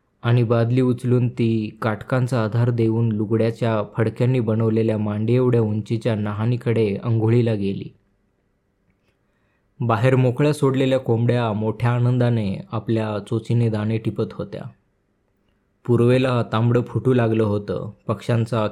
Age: 20-39